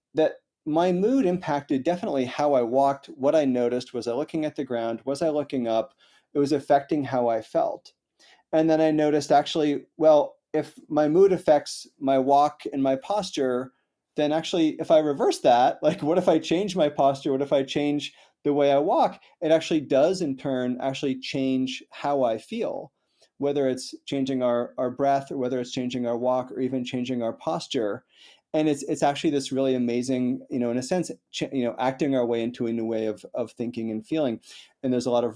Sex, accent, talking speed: male, American, 205 wpm